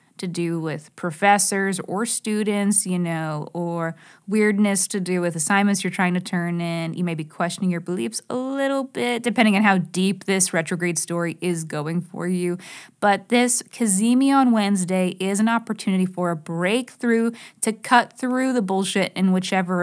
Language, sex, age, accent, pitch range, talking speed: English, female, 20-39, American, 175-215 Hz, 175 wpm